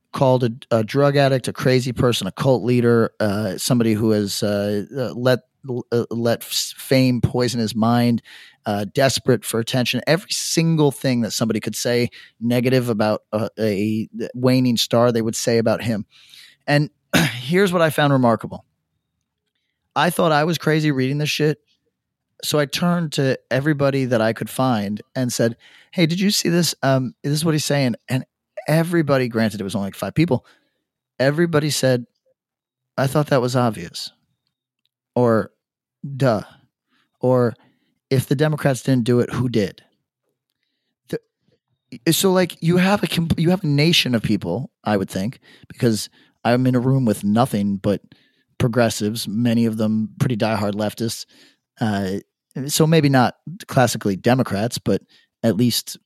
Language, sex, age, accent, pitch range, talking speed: English, male, 30-49, American, 115-140 Hz, 160 wpm